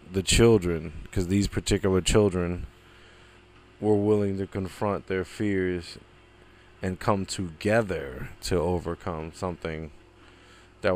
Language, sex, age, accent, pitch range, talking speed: English, male, 20-39, American, 90-100 Hz, 105 wpm